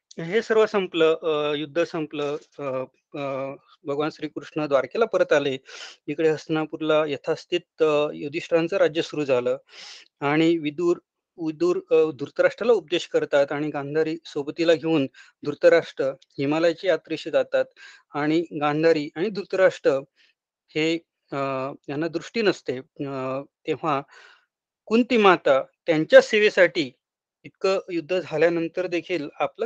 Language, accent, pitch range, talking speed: Marathi, native, 150-195 Hz, 65 wpm